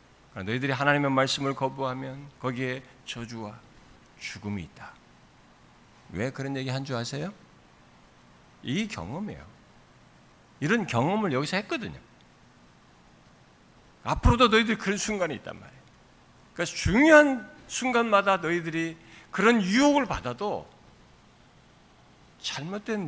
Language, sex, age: Korean, male, 60-79